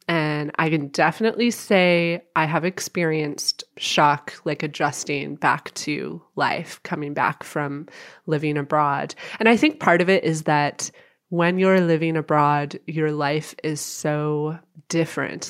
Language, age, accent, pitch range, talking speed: English, 20-39, American, 150-190 Hz, 140 wpm